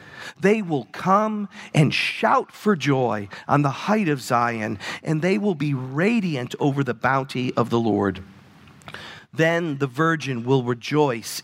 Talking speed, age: 145 wpm, 50-69